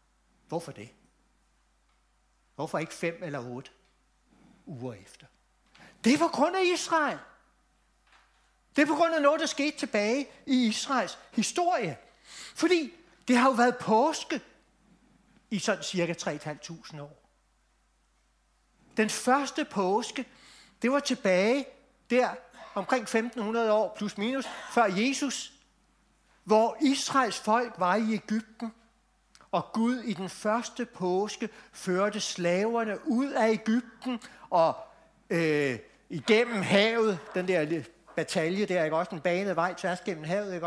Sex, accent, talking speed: male, native, 125 wpm